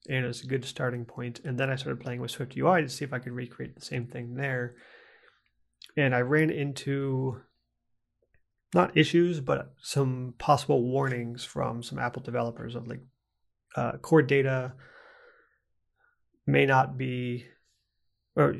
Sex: male